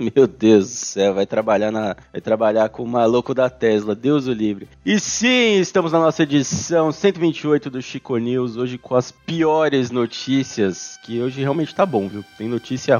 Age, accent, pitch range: 20-39, Brazilian, 120-155 Hz